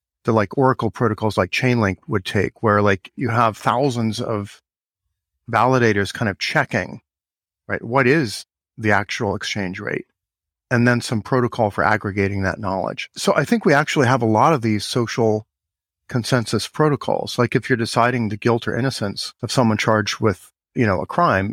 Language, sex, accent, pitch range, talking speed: English, male, American, 100-125 Hz, 175 wpm